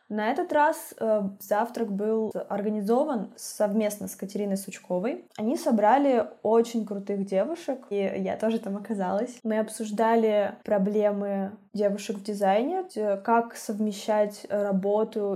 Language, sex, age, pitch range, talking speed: Russian, female, 10-29, 195-220 Hz, 115 wpm